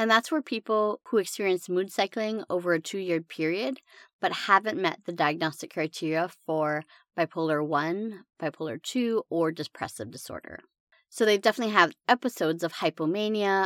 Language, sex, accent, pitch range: English, female, American, 160-225 Hz